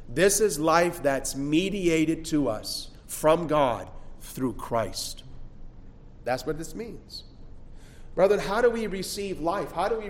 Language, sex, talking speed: English, male, 145 wpm